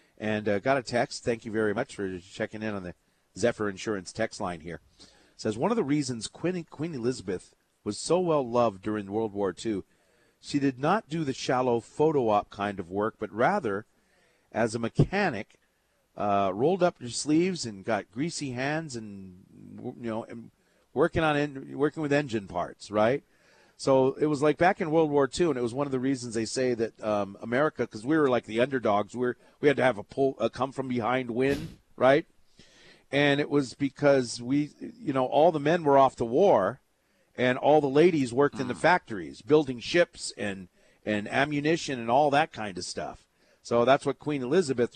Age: 40-59